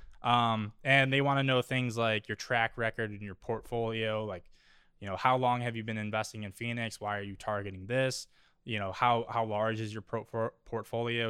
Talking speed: 200 wpm